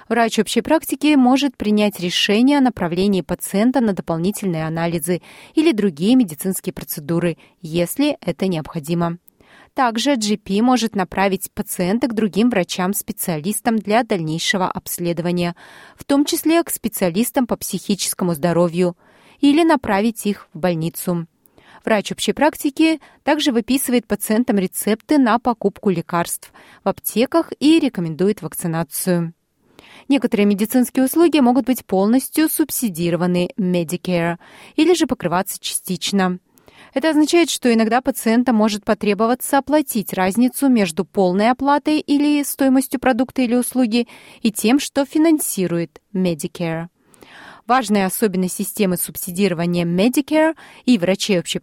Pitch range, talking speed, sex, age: 180-260 Hz, 115 wpm, female, 30-49